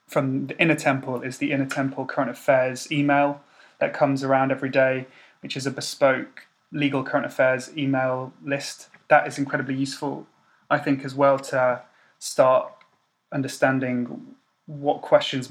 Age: 30-49